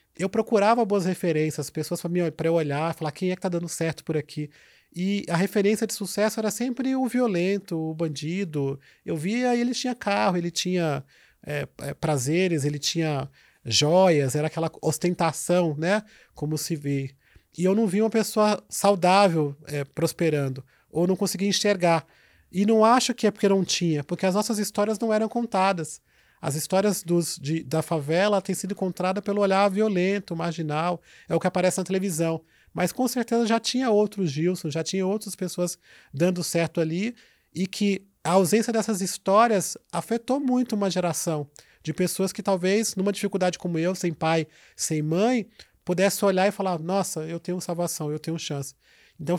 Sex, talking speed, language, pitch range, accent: male, 170 wpm, Portuguese, 165-205 Hz, Brazilian